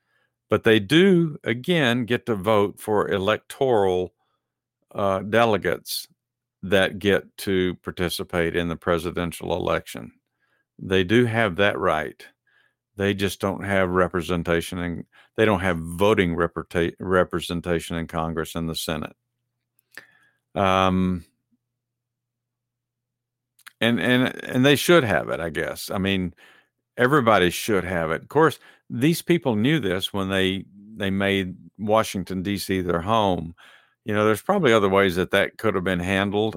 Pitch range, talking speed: 90-120 Hz, 135 wpm